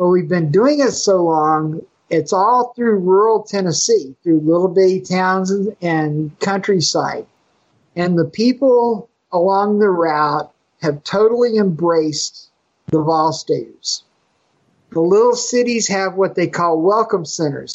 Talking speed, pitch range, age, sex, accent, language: 130 wpm, 160-200 Hz, 50-69, male, American, English